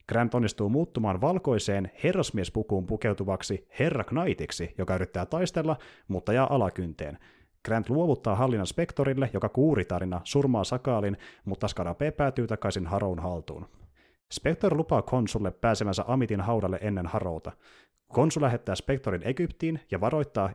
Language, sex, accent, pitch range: Finnish, male, native, 95-135 Hz